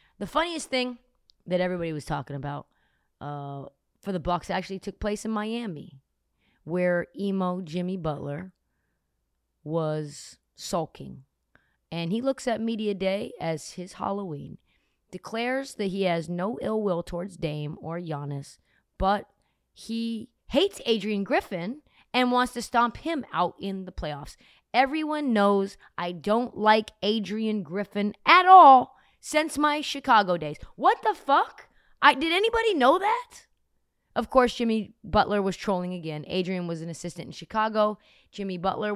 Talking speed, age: 140 wpm, 20-39